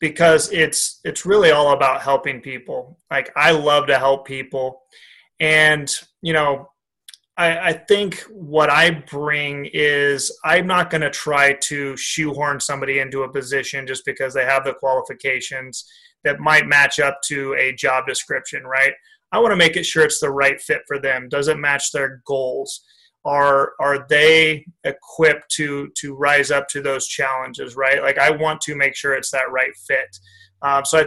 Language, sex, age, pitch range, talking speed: English, male, 30-49, 135-160 Hz, 180 wpm